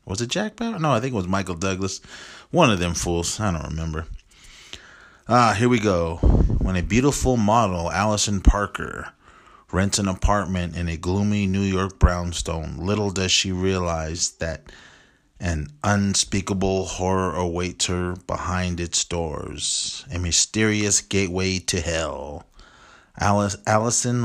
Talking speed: 140 wpm